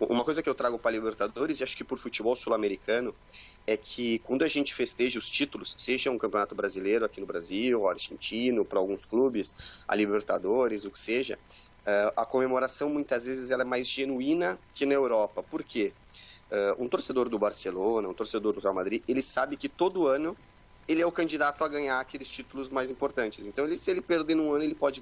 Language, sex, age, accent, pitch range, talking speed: Portuguese, male, 30-49, Brazilian, 110-145 Hz, 200 wpm